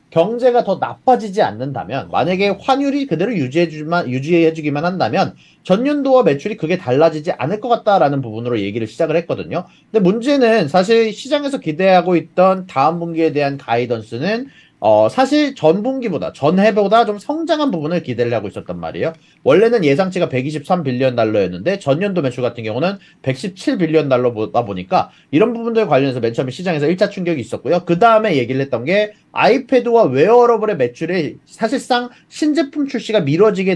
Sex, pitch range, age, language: male, 135-215 Hz, 30-49, Korean